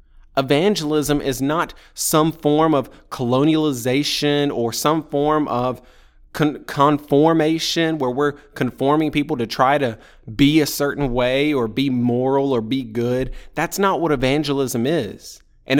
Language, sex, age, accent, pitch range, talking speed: English, male, 20-39, American, 120-150 Hz, 135 wpm